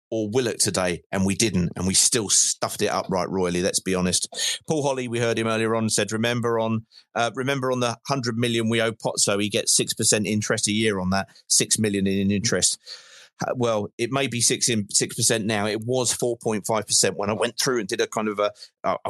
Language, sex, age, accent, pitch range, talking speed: English, male, 40-59, British, 95-120 Hz, 240 wpm